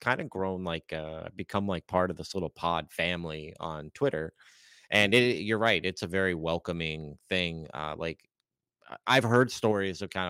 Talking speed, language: 175 wpm, English